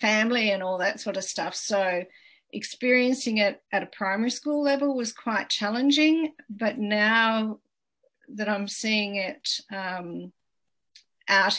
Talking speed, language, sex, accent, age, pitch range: 135 wpm, English, female, Australian, 50-69, 195-240 Hz